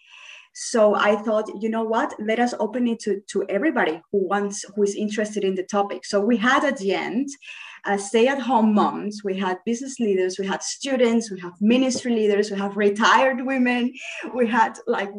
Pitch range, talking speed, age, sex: 195-240 Hz, 200 wpm, 20-39, female